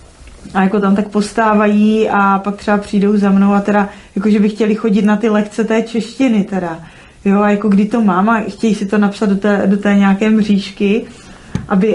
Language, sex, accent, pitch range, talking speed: Czech, female, native, 180-200 Hz, 205 wpm